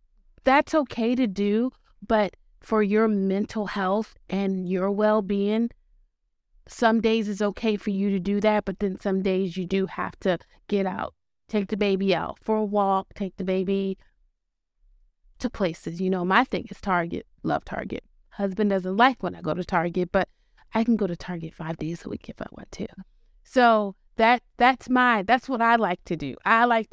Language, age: English, 30-49